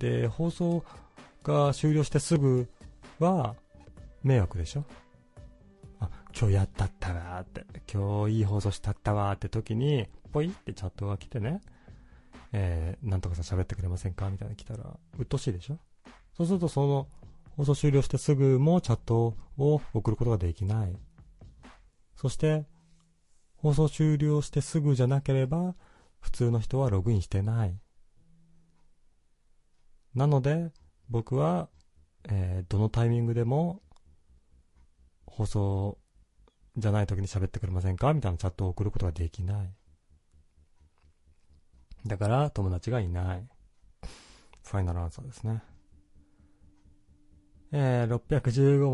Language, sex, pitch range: Japanese, male, 90-130 Hz